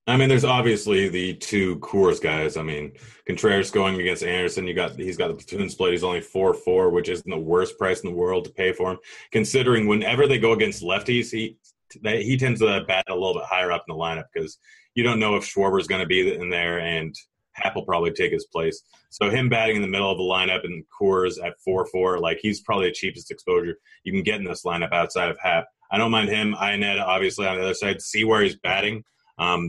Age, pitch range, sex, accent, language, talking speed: 30-49, 95-135 Hz, male, American, English, 235 wpm